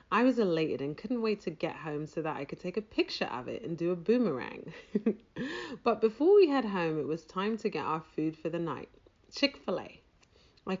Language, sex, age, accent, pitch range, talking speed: English, female, 30-49, British, 150-220 Hz, 215 wpm